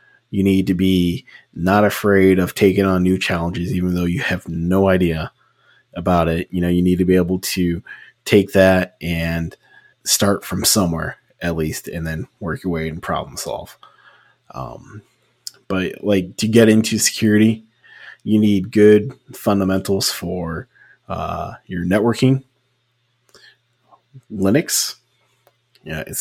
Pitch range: 90-105 Hz